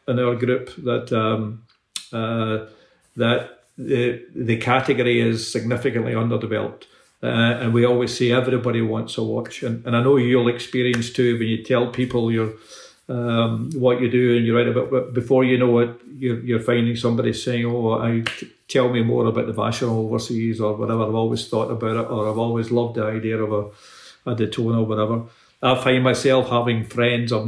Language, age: English, 50-69